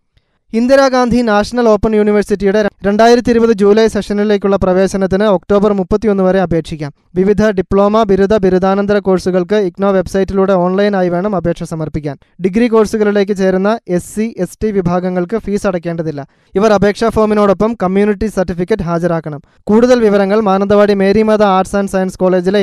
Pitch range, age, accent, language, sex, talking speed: 185-210 Hz, 20-39, native, Malayalam, male, 120 wpm